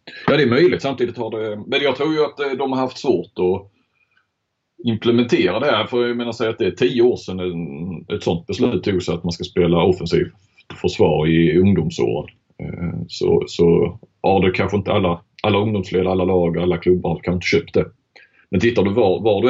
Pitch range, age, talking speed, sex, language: 85-105 Hz, 30-49, 210 wpm, male, Swedish